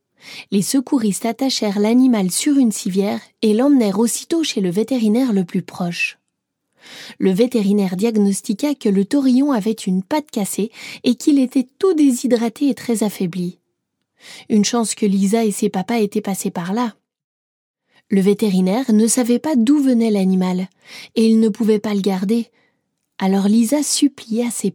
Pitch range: 205-270 Hz